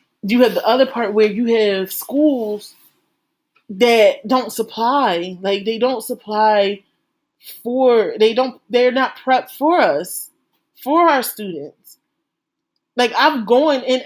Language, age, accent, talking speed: English, 30-49, American, 130 wpm